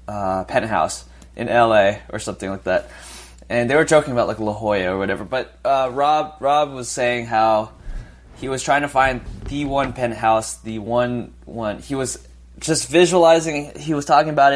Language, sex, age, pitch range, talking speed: English, male, 20-39, 105-140 Hz, 180 wpm